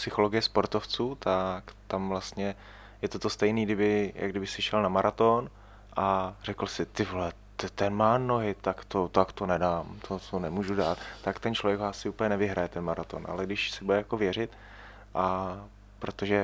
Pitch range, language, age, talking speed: 95-105 Hz, Czech, 20-39, 175 wpm